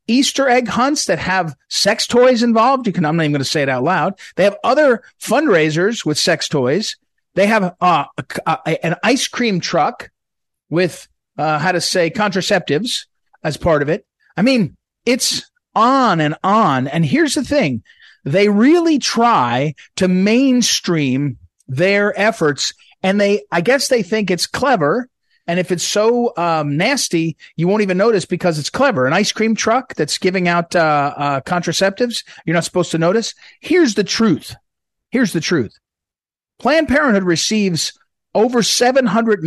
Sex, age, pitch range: male, 40-59, 155-230 Hz